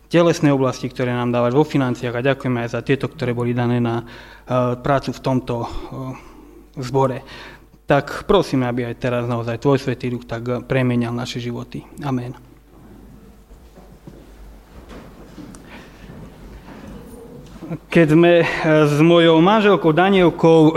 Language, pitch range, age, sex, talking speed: Slovak, 135-185 Hz, 30-49, male, 115 wpm